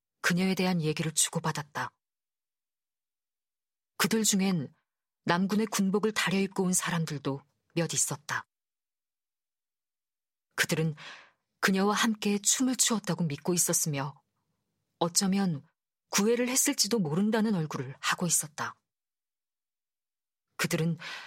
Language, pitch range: Korean, 165-210 Hz